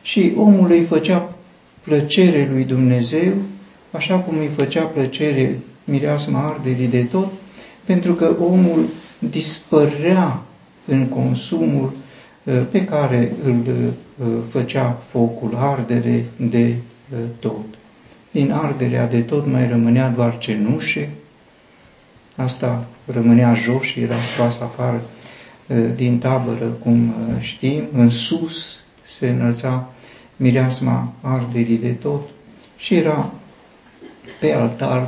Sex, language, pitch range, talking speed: male, Romanian, 115-145 Hz, 105 wpm